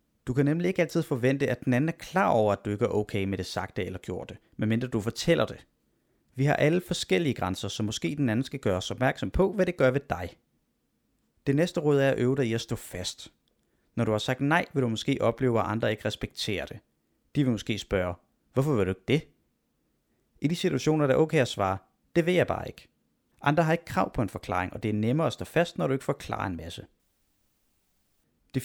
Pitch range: 110-140 Hz